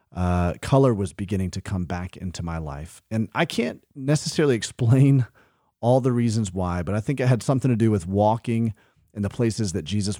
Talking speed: 200 wpm